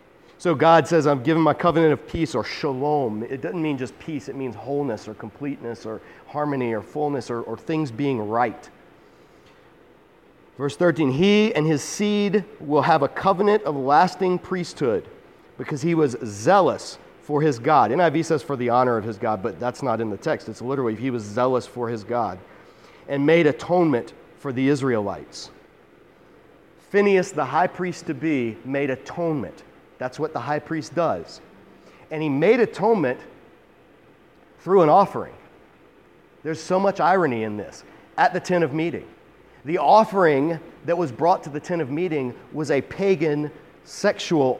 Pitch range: 130-170 Hz